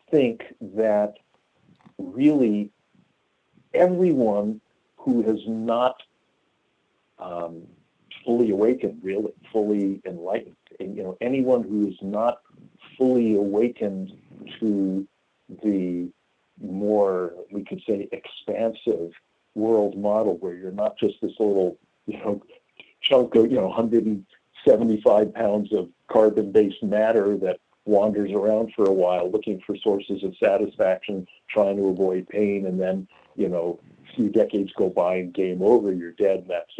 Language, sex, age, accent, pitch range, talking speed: English, male, 50-69, American, 100-120 Hz, 130 wpm